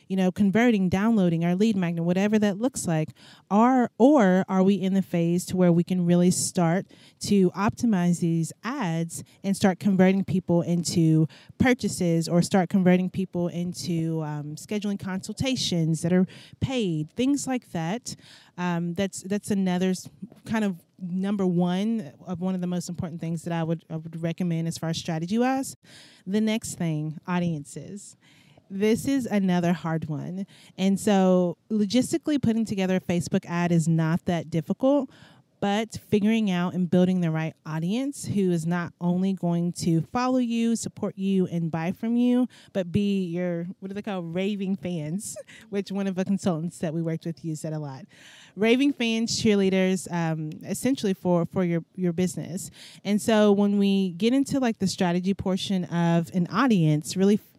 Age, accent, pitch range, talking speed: 30-49, American, 170-205 Hz, 170 wpm